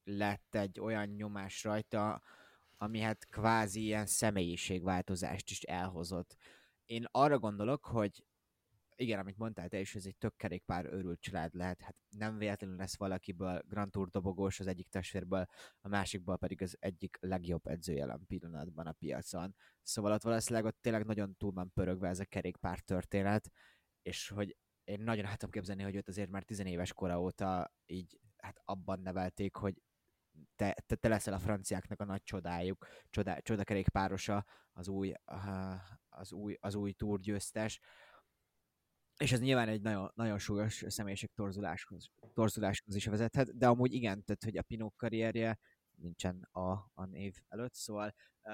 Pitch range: 95-110 Hz